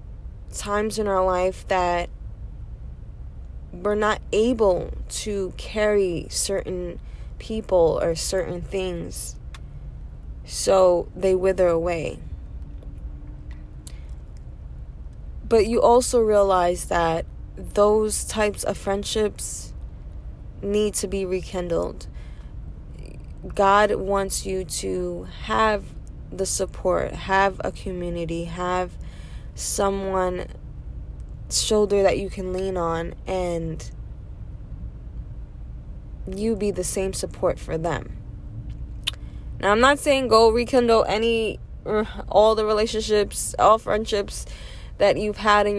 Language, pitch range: English, 175-210 Hz